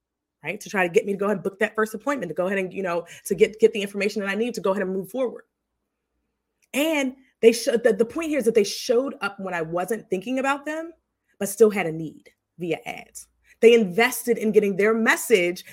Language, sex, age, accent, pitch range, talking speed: English, female, 20-39, American, 185-250 Hz, 250 wpm